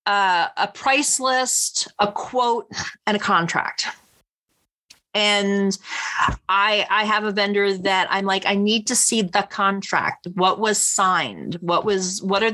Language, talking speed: English, 150 wpm